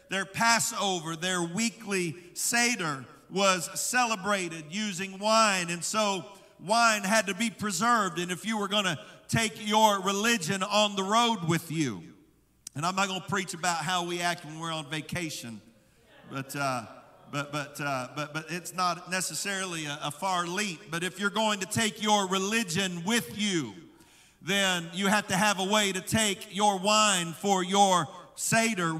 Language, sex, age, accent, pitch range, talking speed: English, male, 50-69, American, 180-225 Hz, 170 wpm